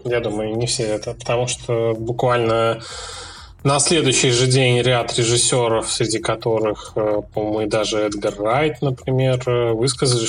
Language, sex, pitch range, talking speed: Russian, male, 110-130 Hz, 135 wpm